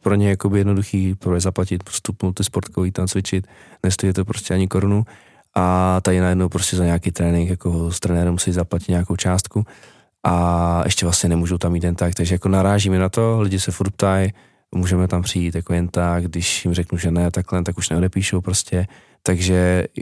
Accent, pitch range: native, 85-95 Hz